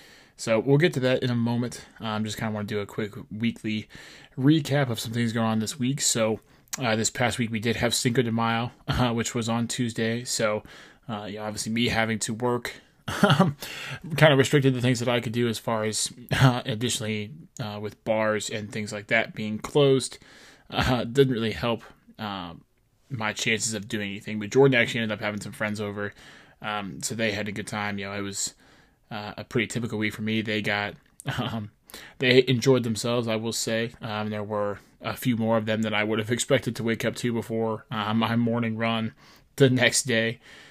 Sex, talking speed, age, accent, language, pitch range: male, 210 wpm, 20-39, American, English, 110-125 Hz